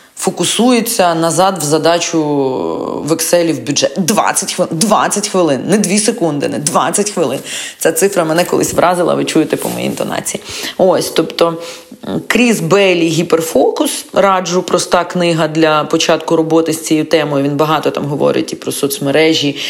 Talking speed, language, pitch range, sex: 150 wpm, Ukrainian, 145-185 Hz, female